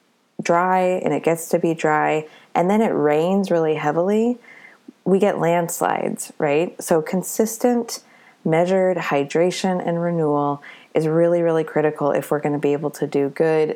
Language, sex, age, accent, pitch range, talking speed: English, female, 20-39, American, 140-175 Hz, 155 wpm